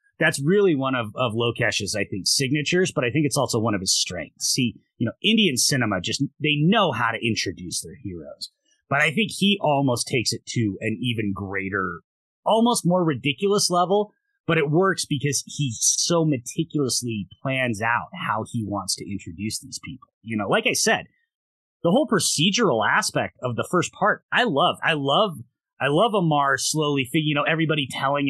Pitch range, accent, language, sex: 115-155 Hz, American, English, male